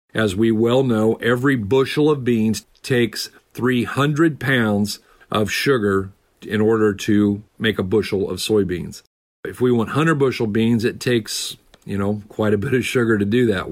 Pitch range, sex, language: 105-125 Hz, male, English